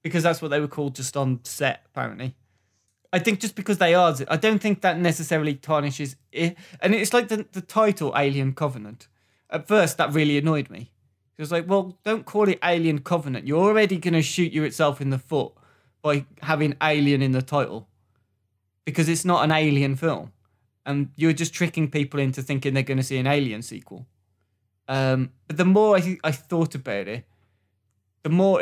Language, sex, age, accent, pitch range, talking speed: English, male, 20-39, British, 125-165 Hz, 195 wpm